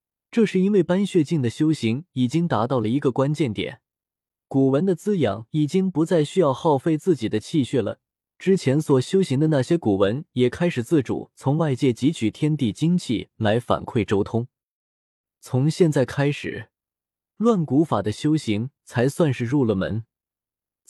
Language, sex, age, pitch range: Chinese, male, 20-39, 110-160 Hz